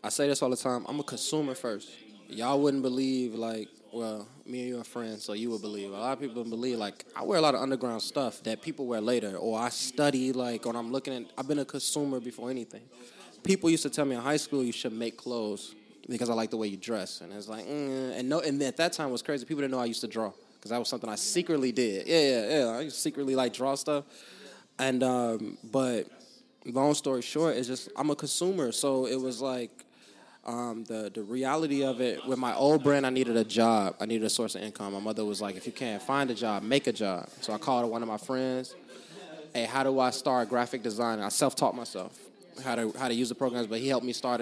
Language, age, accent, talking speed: English, 20-39, American, 255 wpm